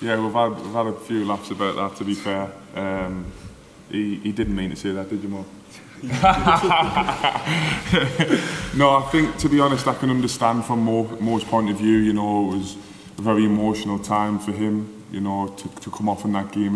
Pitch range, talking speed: 100-110 Hz, 210 wpm